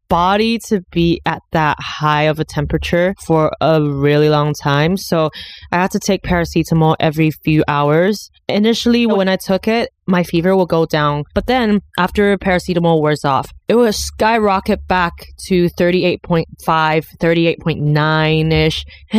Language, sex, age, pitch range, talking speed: English, female, 20-39, 150-190 Hz, 145 wpm